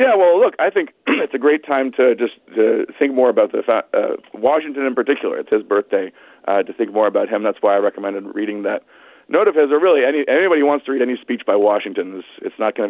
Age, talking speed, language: 40-59, 240 wpm, English